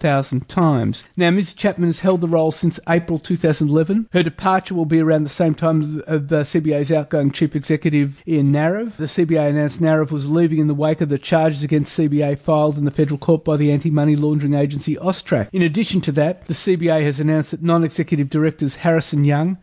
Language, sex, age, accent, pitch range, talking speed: English, male, 30-49, Australian, 150-175 Hz, 200 wpm